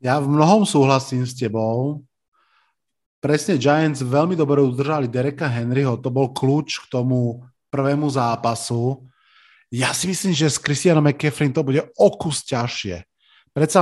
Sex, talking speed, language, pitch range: male, 140 wpm, Slovak, 125-145 Hz